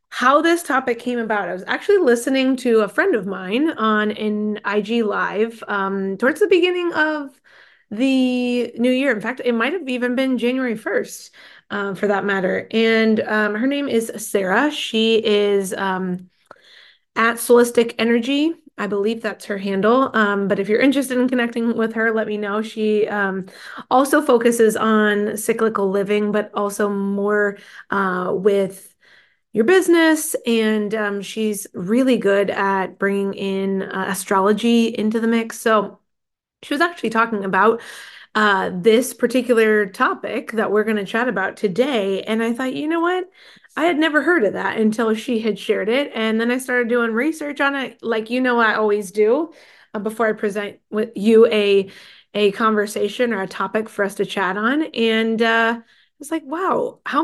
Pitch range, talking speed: 205-250 Hz, 175 wpm